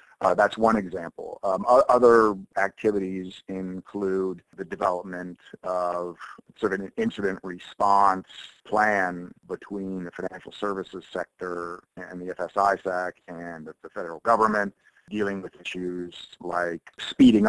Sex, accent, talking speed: male, American, 115 wpm